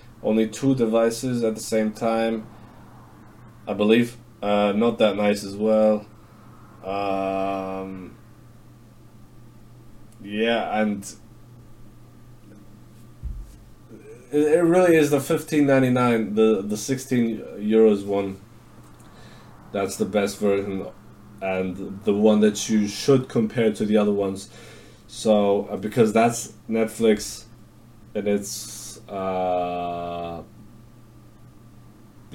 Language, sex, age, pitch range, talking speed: English, male, 20-39, 105-120 Hz, 95 wpm